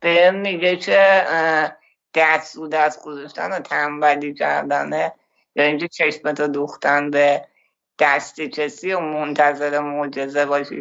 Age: 60-79